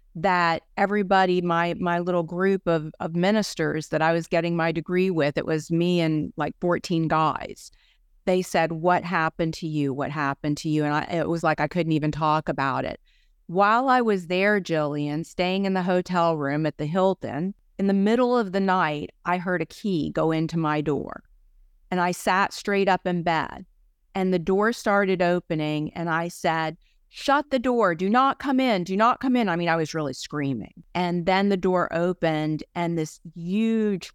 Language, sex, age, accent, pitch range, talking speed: English, female, 40-59, American, 155-190 Hz, 195 wpm